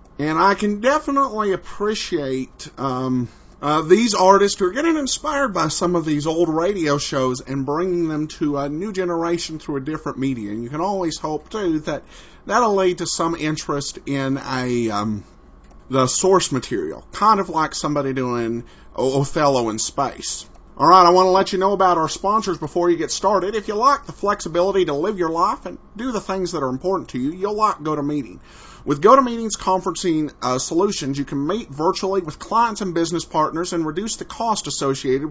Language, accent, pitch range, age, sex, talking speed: English, American, 140-195 Hz, 50-69, male, 195 wpm